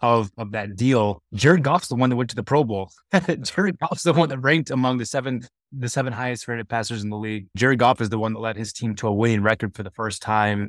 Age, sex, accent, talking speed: 20-39, male, American, 270 wpm